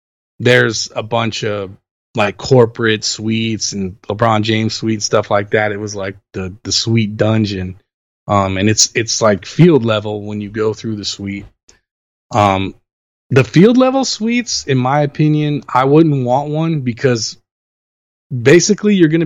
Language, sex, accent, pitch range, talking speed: English, male, American, 100-125 Hz, 155 wpm